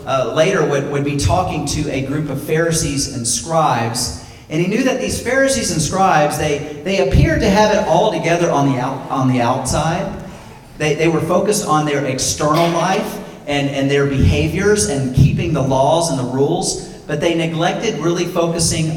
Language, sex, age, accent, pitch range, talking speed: English, male, 40-59, American, 135-185 Hz, 185 wpm